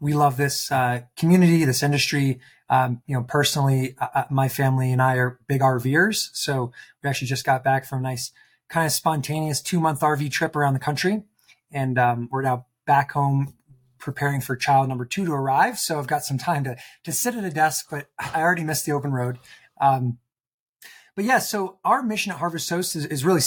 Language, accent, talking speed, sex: English, American, 205 wpm, male